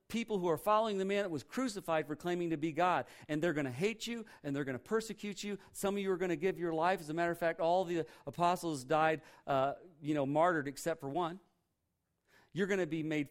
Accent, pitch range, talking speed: American, 135-180 Hz, 255 wpm